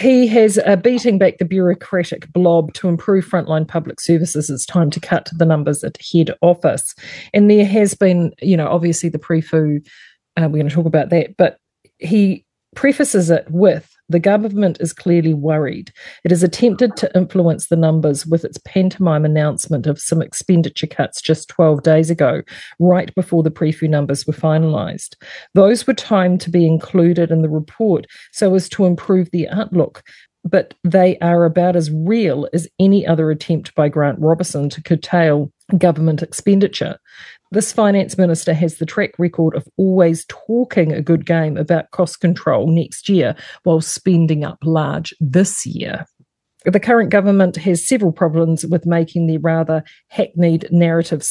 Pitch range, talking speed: 160-190 Hz, 165 wpm